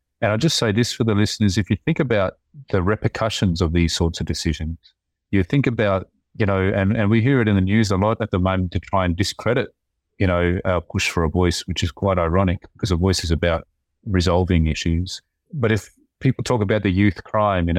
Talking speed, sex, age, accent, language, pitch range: 230 wpm, male, 30-49, Australian, English, 85-105 Hz